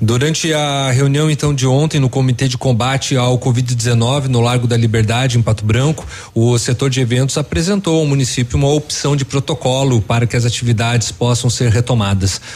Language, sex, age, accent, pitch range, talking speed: Portuguese, male, 30-49, Brazilian, 115-145 Hz, 180 wpm